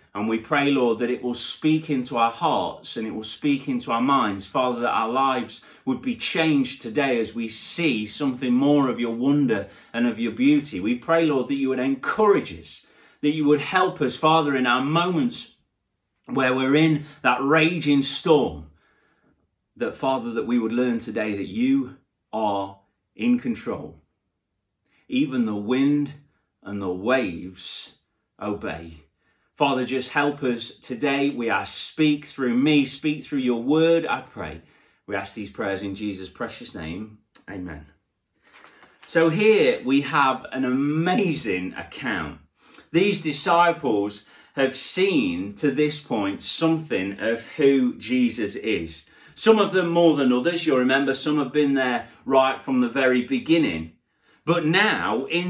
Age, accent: 30-49, British